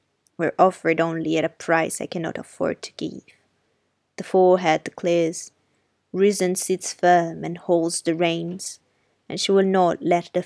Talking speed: 155 wpm